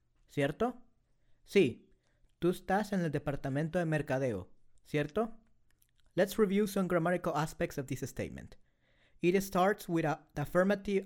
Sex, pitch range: male, 140-180 Hz